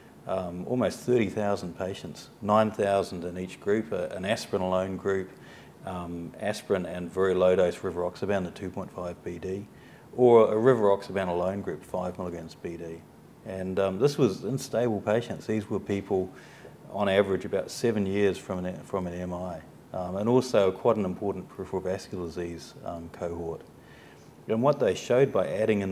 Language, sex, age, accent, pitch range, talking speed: English, male, 40-59, New Zealand, 90-100 Hz, 165 wpm